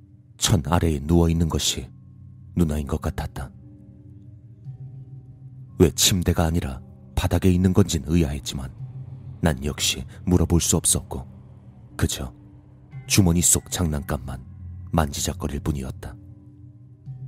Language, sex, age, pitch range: Korean, male, 40-59, 80-105 Hz